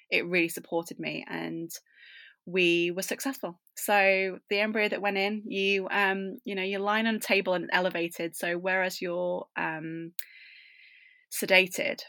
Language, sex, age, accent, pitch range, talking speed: English, female, 20-39, British, 165-195 Hz, 150 wpm